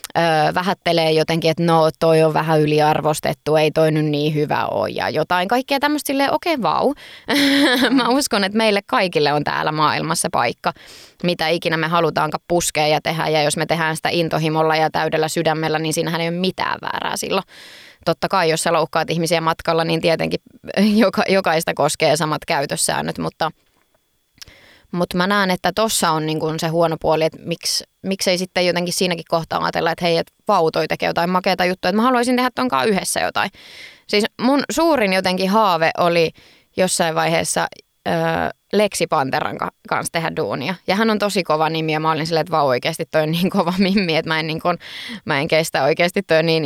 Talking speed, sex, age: 185 wpm, female, 20-39